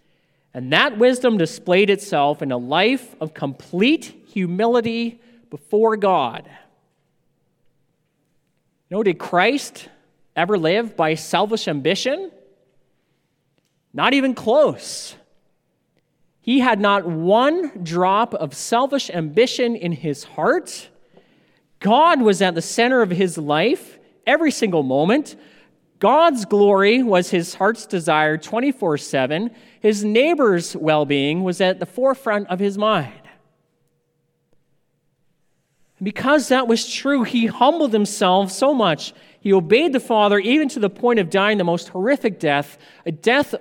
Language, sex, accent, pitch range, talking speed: English, male, American, 160-235 Hz, 120 wpm